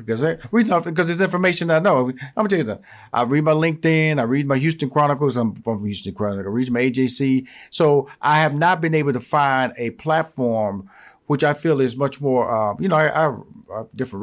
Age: 50-69